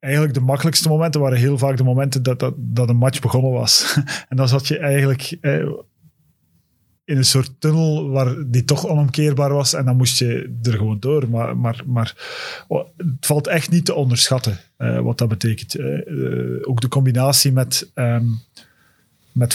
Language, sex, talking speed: Dutch, male, 170 wpm